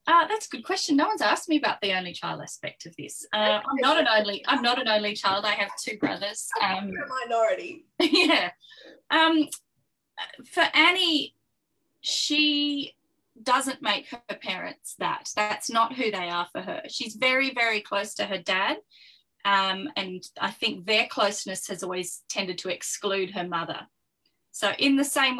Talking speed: 175 wpm